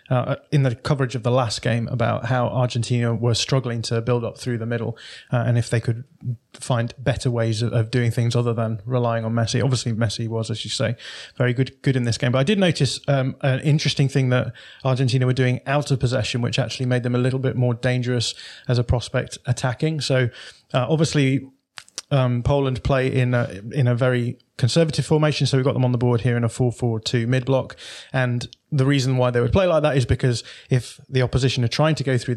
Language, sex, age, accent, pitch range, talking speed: English, male, 20-39, British, 120-135 Hz, 225 wpm